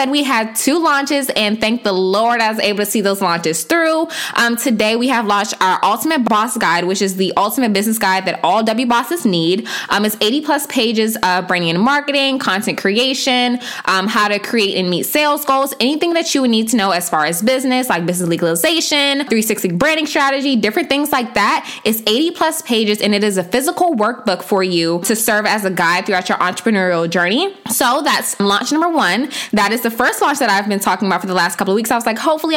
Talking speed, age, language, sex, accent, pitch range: 225 wpm, 10-29, English, female, American, 195-270 Hz